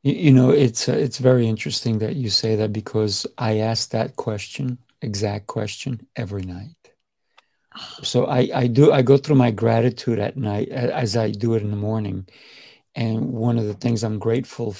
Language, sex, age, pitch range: English, male, 50-69, 110-125 Hz